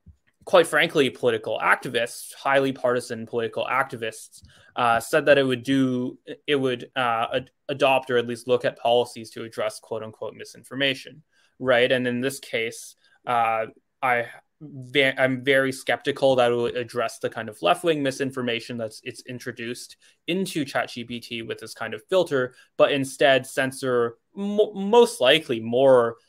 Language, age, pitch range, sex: English, 20-39, 120-140 Hz, male